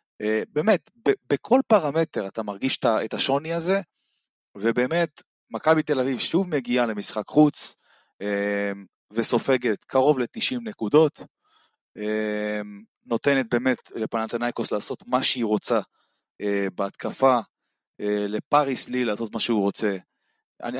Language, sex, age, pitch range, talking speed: Hebrew, male, 30-49, 105-135 Hz, 115 wpm